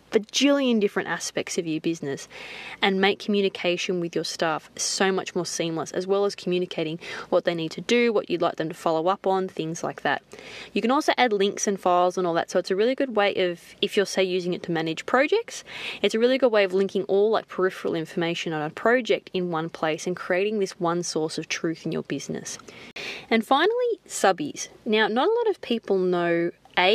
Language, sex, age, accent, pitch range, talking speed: English, female, 20-39, Australian, 170-225 Hz, 225 wpm